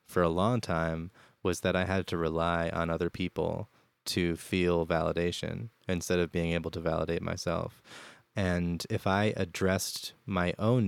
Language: English